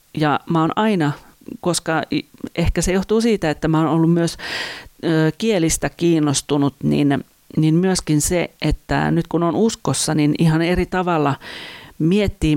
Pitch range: 150-175 Hz